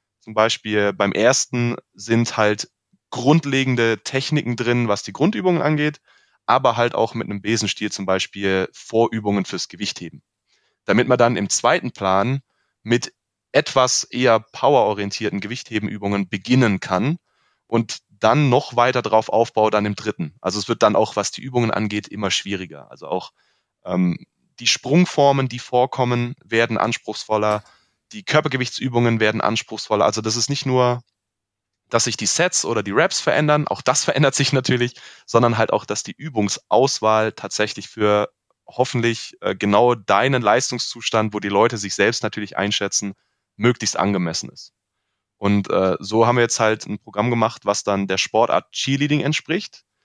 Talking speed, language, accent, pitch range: 150 wpm, German, German, 100-125 Hz